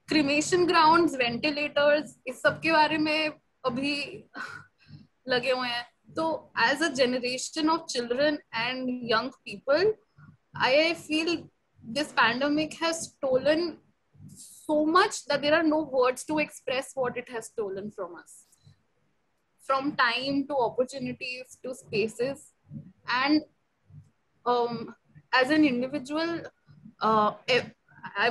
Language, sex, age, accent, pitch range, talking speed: Hindi, female, 10-29, native, 235-290 Hz, 100 wpm